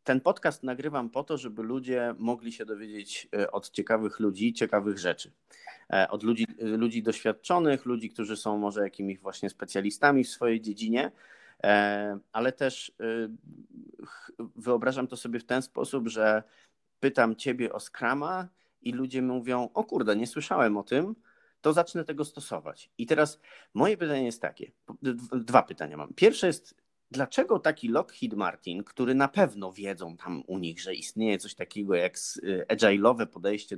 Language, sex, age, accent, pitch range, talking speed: Polish, male, 30-49, native, 105-130 Hz, 150 wpm